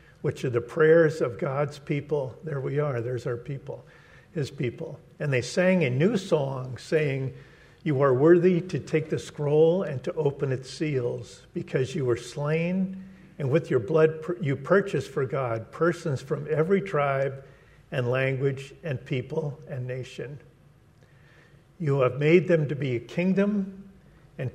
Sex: male